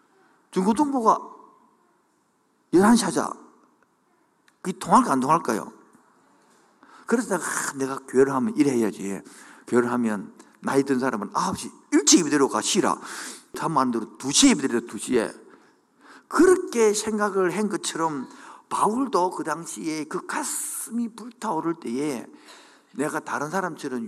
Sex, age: male, 50-69